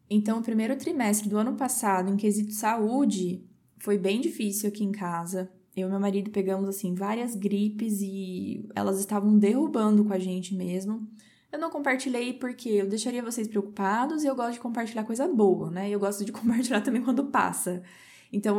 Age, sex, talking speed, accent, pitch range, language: 10-29, female, 180 wpm, Brazilian, 205-250 Hz, Portuguese